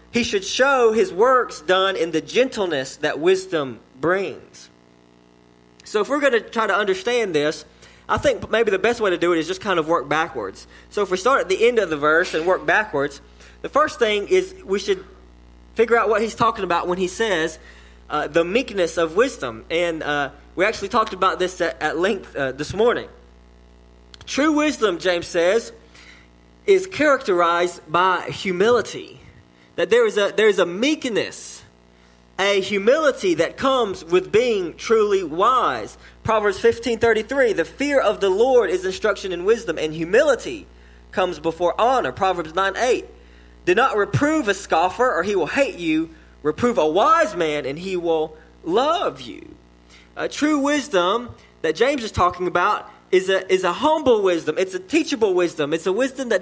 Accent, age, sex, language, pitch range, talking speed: American, 20-39, male, English, 150-245 Hz, 175 wpm